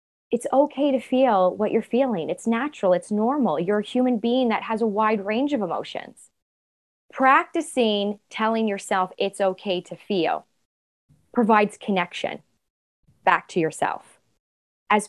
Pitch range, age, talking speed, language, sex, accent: 200-255 Hz, 20-39, 140 wpm, English, female, American